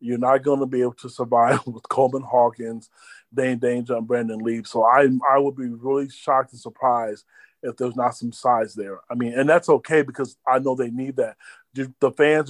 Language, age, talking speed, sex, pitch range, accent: English, 30-49, 210 wpm, male, 120-135 Hz, American